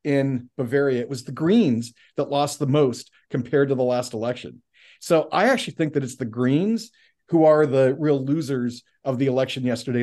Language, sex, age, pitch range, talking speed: English, male, 40-59, 135-175 Hz, 190 wpm